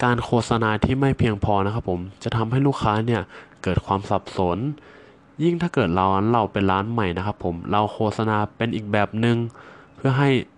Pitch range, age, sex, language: 100-125 Hz, 20-39, male, Thai